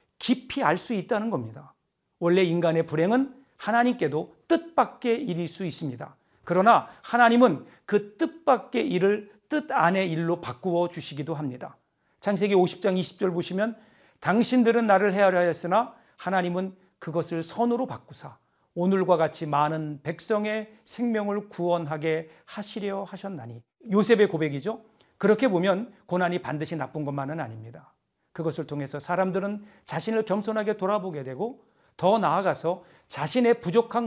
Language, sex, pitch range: Korean, male, 155-215 Hz